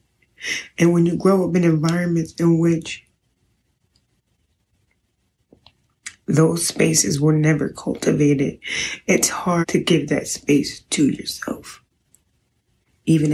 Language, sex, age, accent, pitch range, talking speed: English, female, 30-49, American, 145-165 Hz, 105 wpm